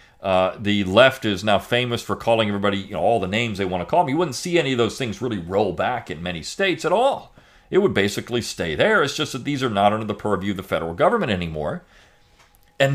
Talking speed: 250 wpm